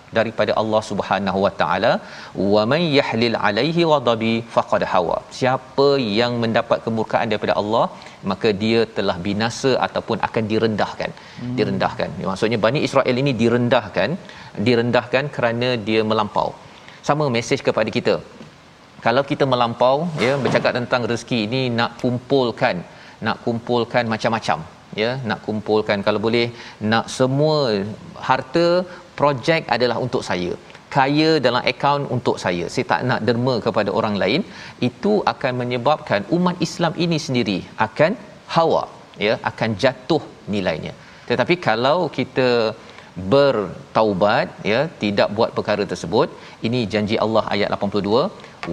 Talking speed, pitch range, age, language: 130 wpm, 110-140 Hz, 40-59, Malayalam